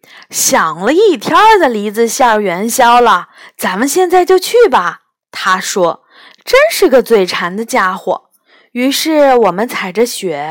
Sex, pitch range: female, 210-355 Hz